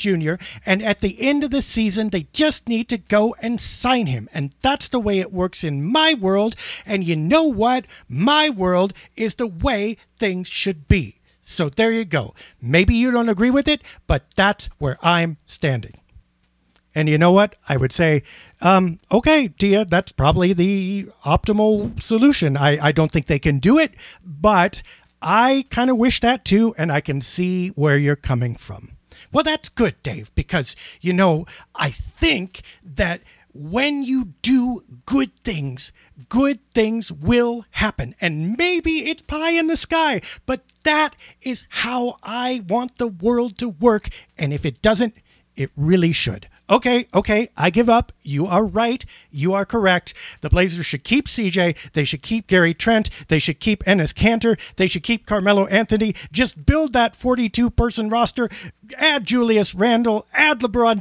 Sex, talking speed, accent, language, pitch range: male, 170 wpm, American, English, 165-240 Hz